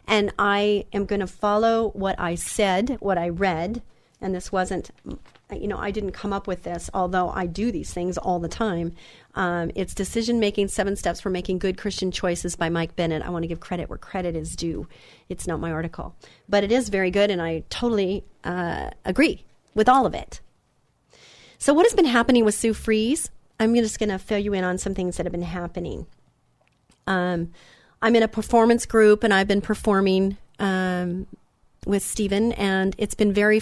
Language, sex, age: English, female, 40-59